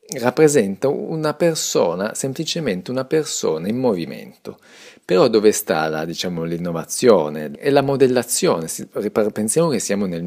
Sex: male